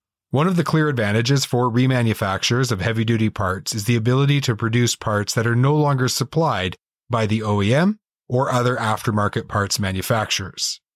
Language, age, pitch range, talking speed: English, 30-49, 110-135 Hz, 160 wpm